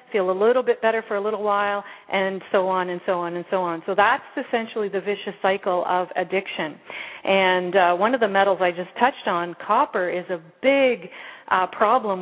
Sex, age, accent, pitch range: female, 40-59, American, 180-210 Hz